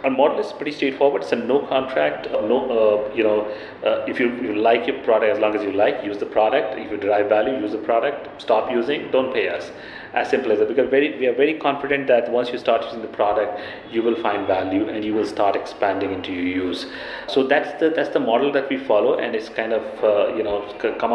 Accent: Indian